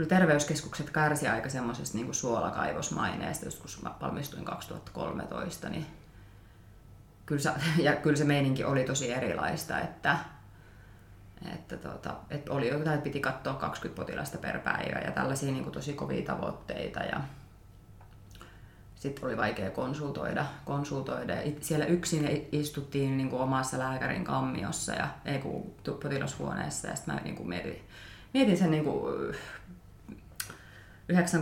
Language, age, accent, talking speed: Finnish, 30-49, native, 125 wpm